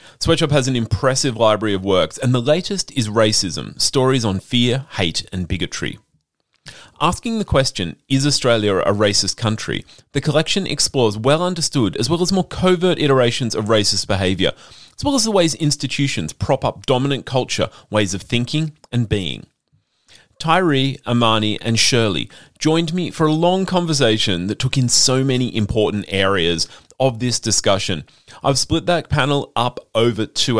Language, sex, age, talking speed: English, male, 30-49, 160 wpm